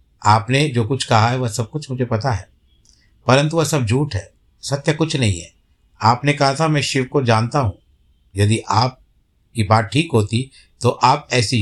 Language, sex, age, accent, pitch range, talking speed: Hindi, male, 60-79, native, 105-140 Hz, 190 wpm